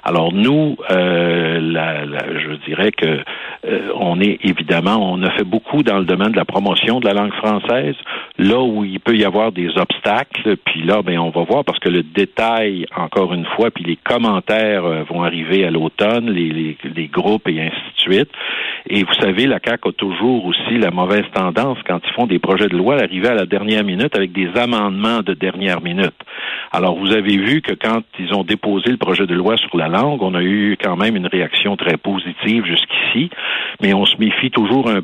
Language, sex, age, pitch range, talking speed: French, male, 60-79, 85-110 Hz, 215 wpm